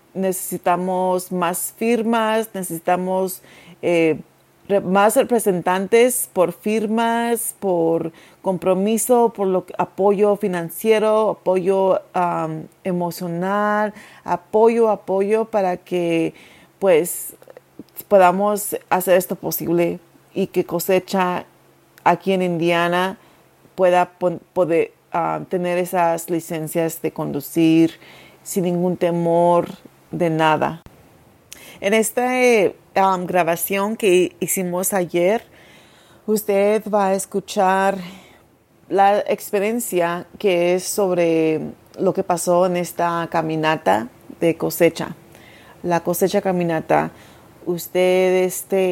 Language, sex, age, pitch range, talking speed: English, female, 40-59, 170-200 Hz, 90 wpm